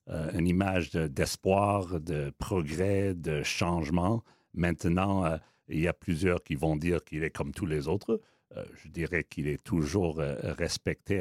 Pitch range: 80-105 Hz